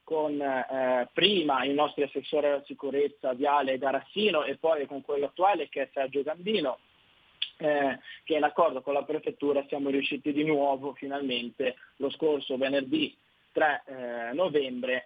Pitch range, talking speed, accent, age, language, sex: 135-160 Hz, 145 wpm, native, 30-49, Italian, male